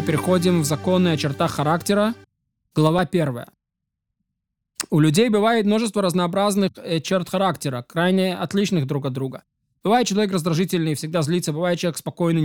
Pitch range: 155-185 Hz